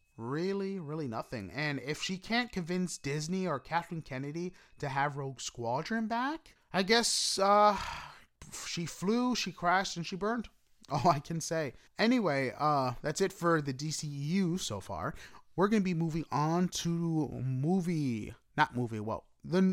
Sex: male